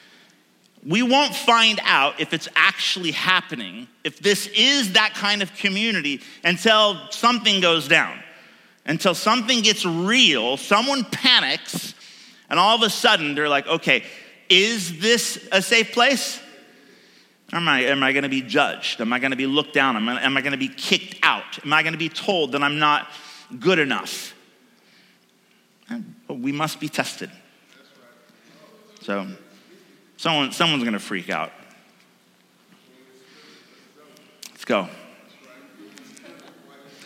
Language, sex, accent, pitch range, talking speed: English, male, American, 135-225 Hz, 140 wpm